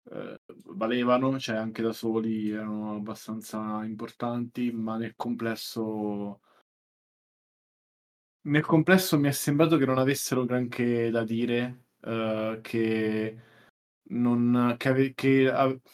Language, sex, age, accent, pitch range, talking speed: Italian, male, 20-39, native, 115-130 Hz, 110 wpm